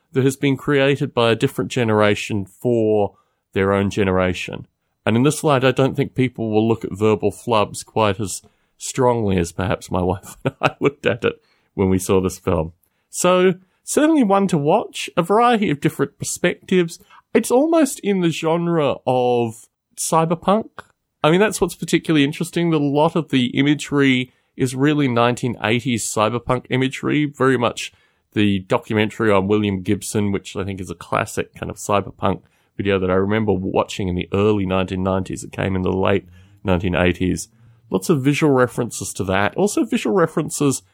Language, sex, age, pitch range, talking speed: English, male, 30-49, 100-145 Hz, 170 wpm